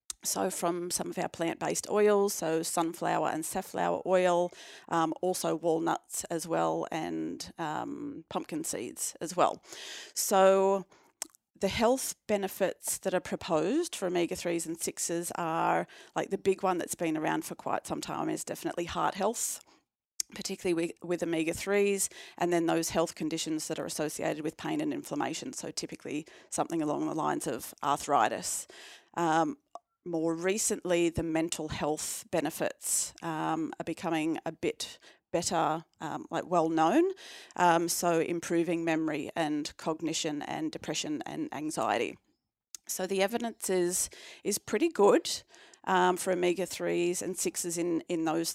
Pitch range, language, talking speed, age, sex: 160-195 Hz, English, 145 wpm, 30-49, female